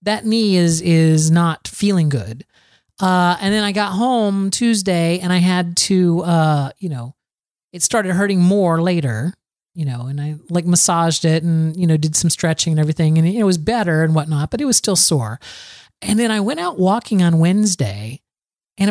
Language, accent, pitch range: English, American, 155-200 Hz